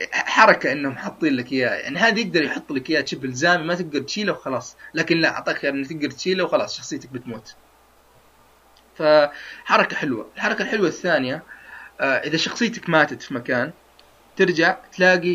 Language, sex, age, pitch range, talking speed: Arabic, male, 30-49, 140-180 Hz, 155 wpm